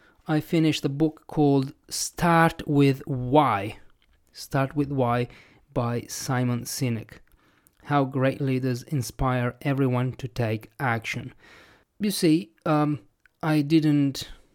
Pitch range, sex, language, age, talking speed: 115-145 Hz, male, English, 30-49, 110 wpm